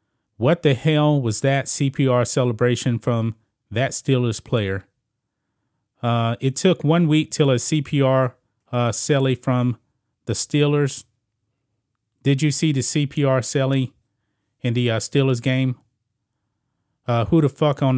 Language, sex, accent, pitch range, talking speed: English, male, American, 115-140 Hz, 135 wpm